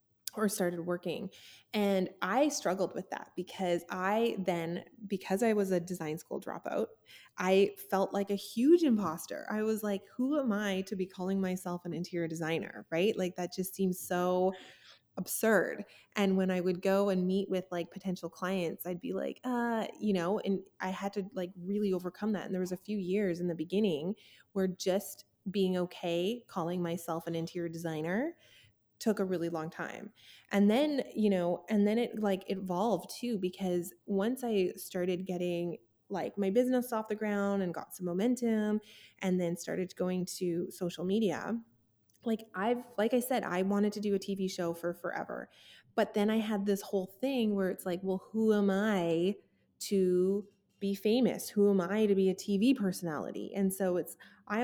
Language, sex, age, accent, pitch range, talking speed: English, female, 20-39, American, 180-210 Hz, 185 wpm